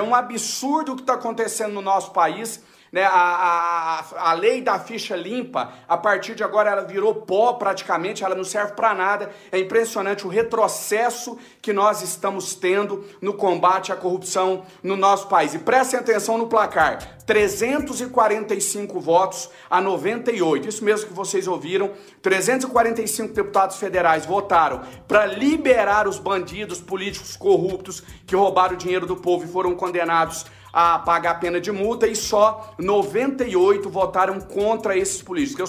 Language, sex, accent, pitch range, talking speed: Portuguese, male, Brazilian, 185-225 Hz, 155 wpm